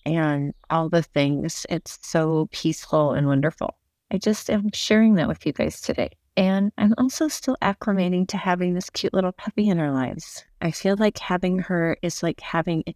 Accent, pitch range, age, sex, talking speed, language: American, 160-200 Hz, 30-49, female, 190 wpm, English